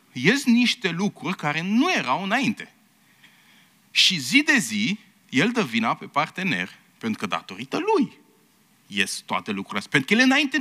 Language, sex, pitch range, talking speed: Romanian, male, 145-235 Hz, 155 wpm